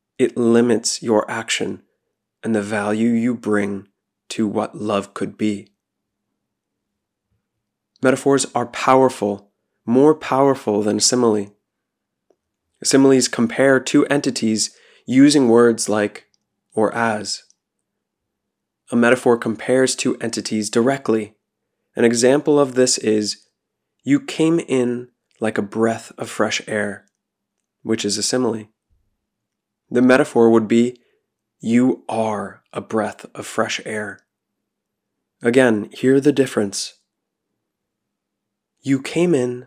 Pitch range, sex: 105-130 Hz, male